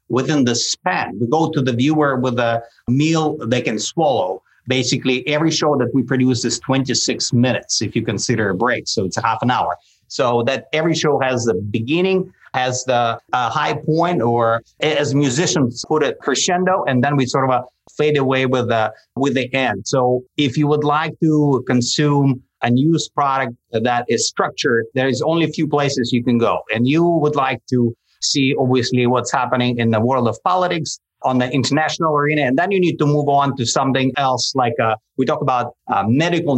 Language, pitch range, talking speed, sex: English, 120-145 Hz, 200 wpm, male